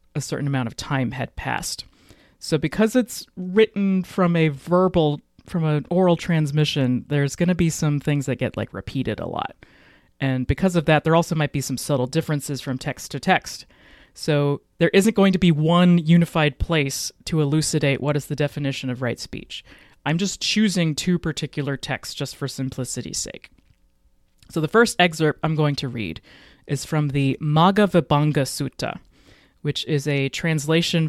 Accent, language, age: American, English, 30-49